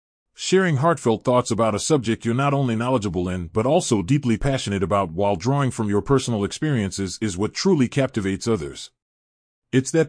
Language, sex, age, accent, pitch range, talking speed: English, male, 30-49, American, 105-140 Hz, 170 wpm